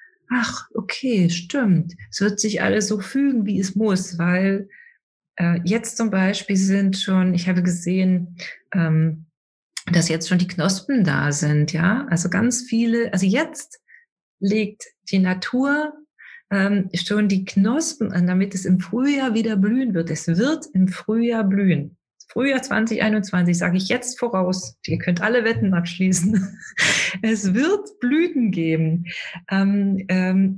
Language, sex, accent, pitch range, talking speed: German, female, German, 170-220 Hz, 145 wpm